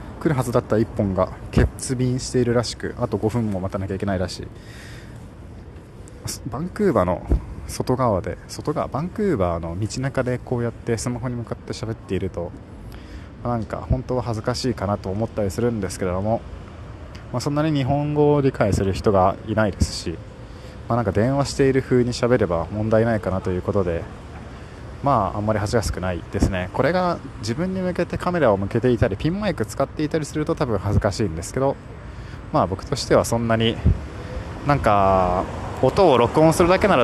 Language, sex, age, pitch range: Japanese, male, 20-39, 100-130 Hz